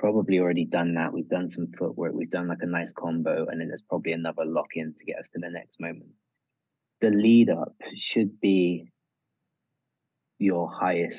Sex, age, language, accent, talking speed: male, 20-39, English, British, 180 wpm